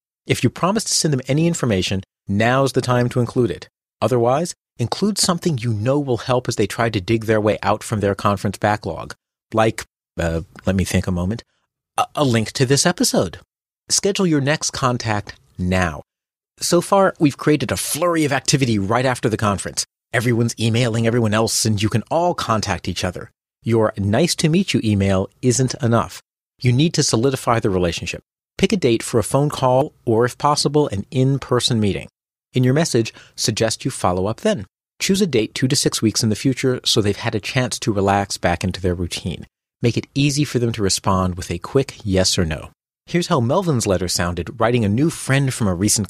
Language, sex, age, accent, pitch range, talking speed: English, male, 40-59, American, 100-135 Hz, 200 wpm